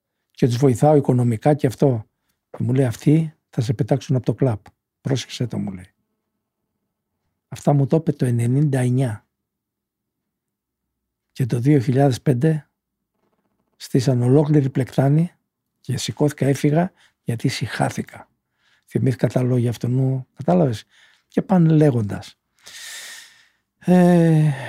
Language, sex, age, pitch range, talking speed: Greek, male, 60-79, 130-180 Hz, 110 wpm